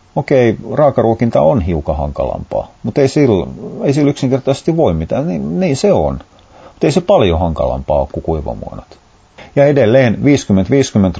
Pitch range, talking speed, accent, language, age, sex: 90-110 Hz, 150 wpm, native, Finnish, 40-59, male